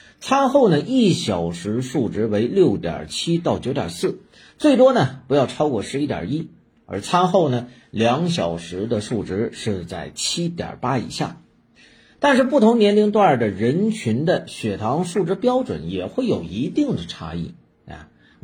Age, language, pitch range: 50-69, Chinese, 105-175 Hz